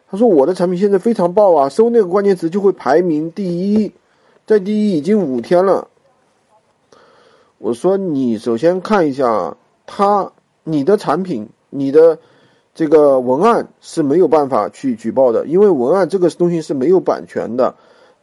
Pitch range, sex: 160-230 Hz, male